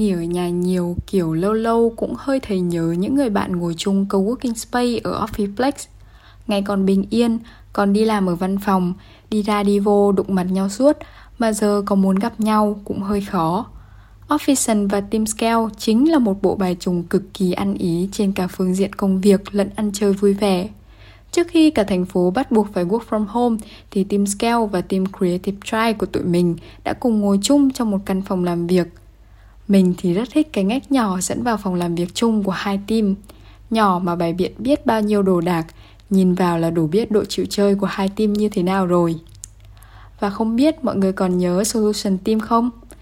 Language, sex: Vietnamese, female